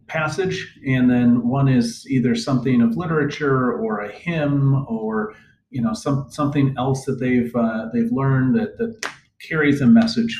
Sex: male